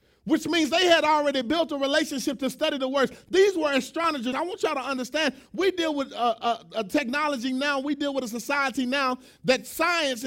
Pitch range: 235-295 Hz